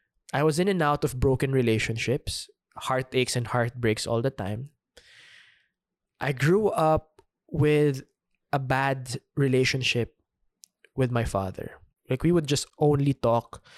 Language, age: English, 20-39